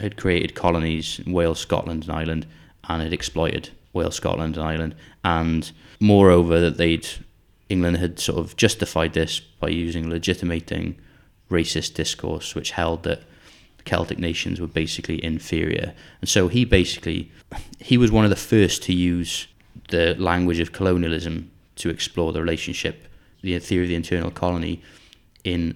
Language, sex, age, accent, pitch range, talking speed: English, male, 20-39, British, 85-95 Hz, 150 wpm